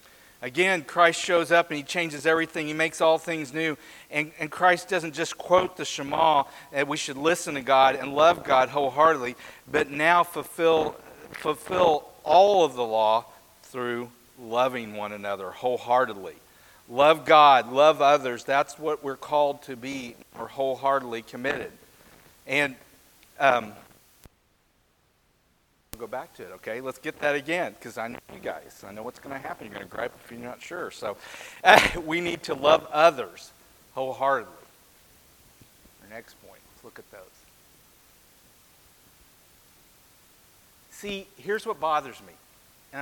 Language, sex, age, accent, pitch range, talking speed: English, male, 50-69, American, 130-170 Hz, 150 wpm